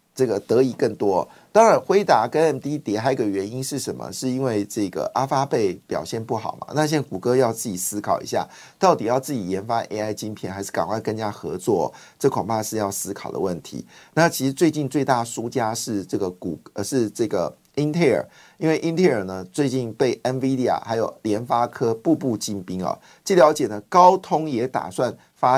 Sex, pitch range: male, 105-140 Hz